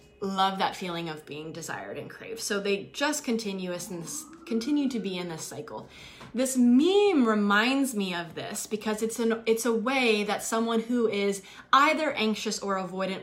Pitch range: 180-225 Hz